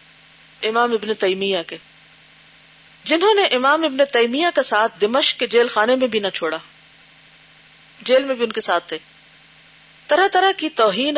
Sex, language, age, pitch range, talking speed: female, Urdu, 40-59, 160-265 Hz, 160 wpm